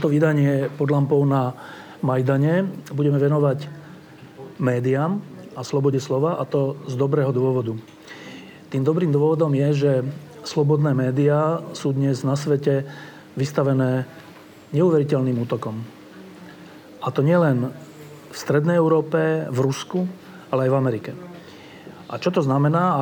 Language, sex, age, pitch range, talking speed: Slovak, male, 40-59, 130-155 Hz, 125 wpm